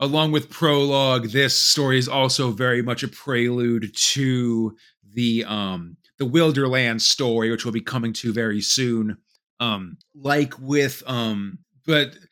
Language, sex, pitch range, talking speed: English, male, 120-150 Hz, 140 wpm